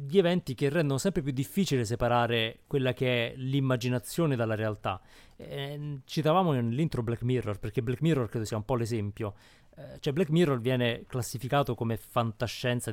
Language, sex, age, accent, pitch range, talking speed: Italian, male, 30-49, native, 110-135 Hz, 160 wpm